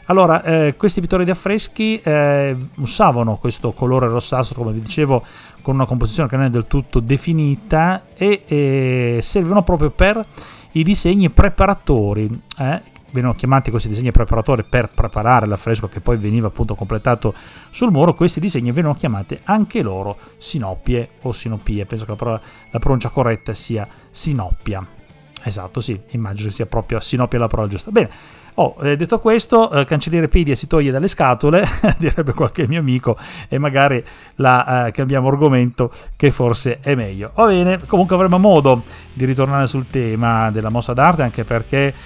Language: Italian